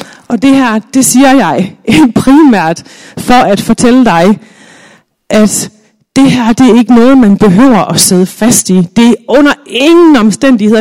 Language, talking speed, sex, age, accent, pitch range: Danish, 160 wpm, female, 30-49, native, 210-275 Hz